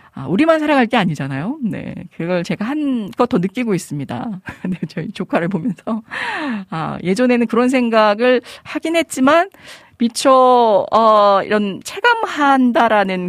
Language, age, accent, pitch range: Korean, 40-59, native, 170-245 Hz